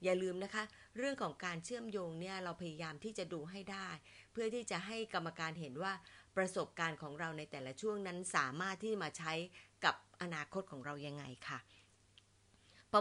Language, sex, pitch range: Thai, female, 160-225 Hz